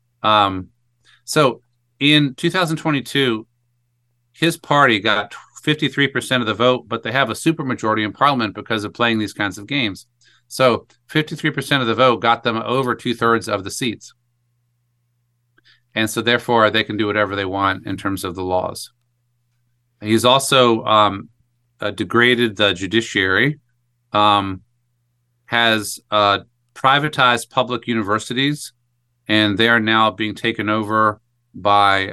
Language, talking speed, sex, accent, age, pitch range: English, 140 wpm, male, American, 40-59, 105-125 Hz